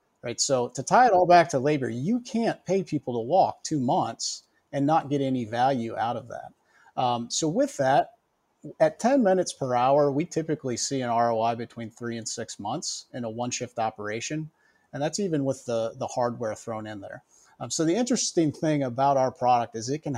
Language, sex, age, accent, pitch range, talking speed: English, male, 40-59, American, 120-150 Hz, 210 wpm